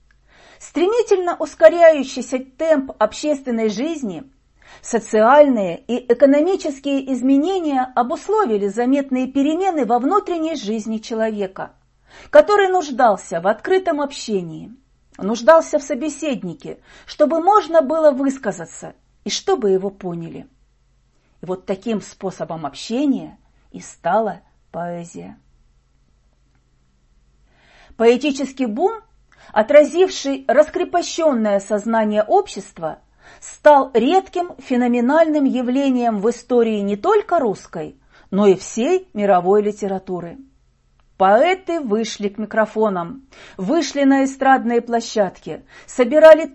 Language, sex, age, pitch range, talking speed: Russian, female, 40-59, 205-310 Hz, 90 wpm